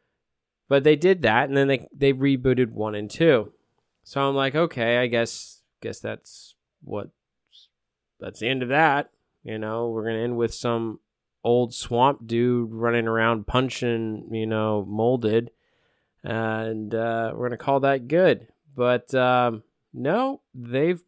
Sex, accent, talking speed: male, American, 150 wpm